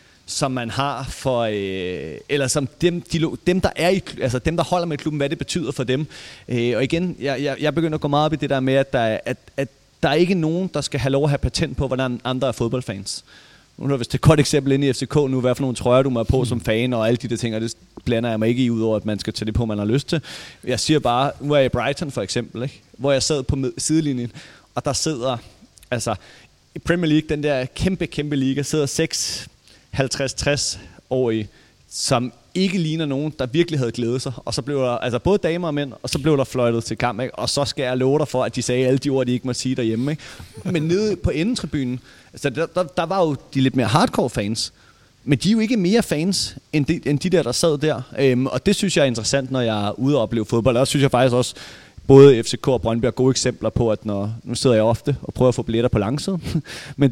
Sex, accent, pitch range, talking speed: male, native, 120-150 Hz, 260 wpm